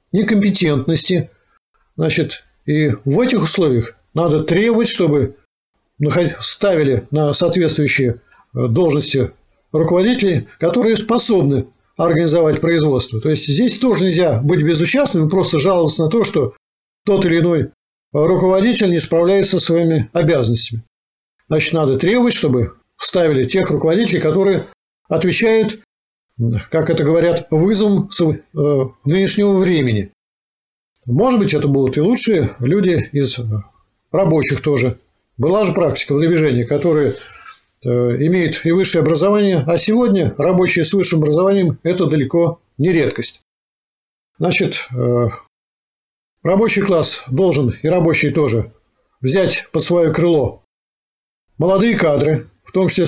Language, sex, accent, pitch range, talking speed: Russian, male, native, 140-185 Hz, 115 wpm